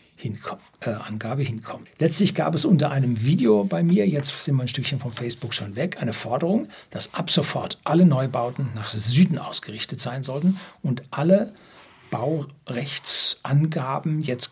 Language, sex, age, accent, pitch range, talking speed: German, male, 60-79, German, 125-160 Hz, 155 wpm